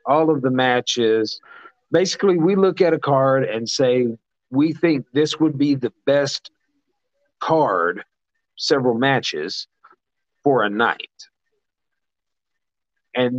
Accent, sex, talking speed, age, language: American, male, 115 wpm, 50-69, English